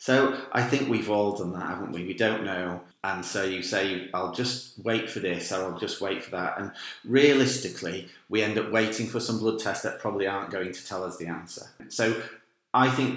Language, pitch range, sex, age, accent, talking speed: English, 95-120 Hz, male, 40-59, British, 225 wpm